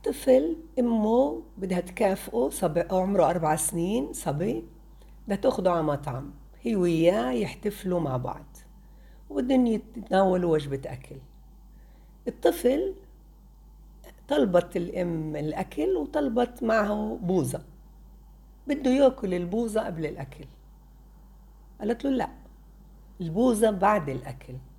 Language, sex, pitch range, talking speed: Arabic, female, 160-210 Hz, 95 wpm